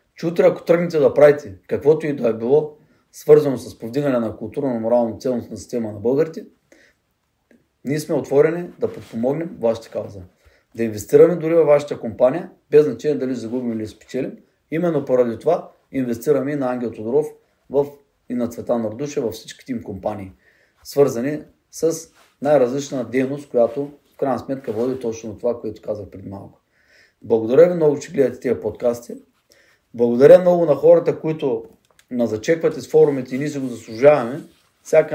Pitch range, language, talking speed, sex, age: 120-160 Hz, Bulgarian, 155 wpm, male, 30-49